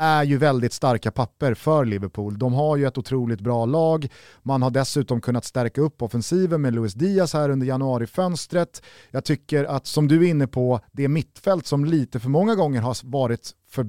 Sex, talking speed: male, 195 wpm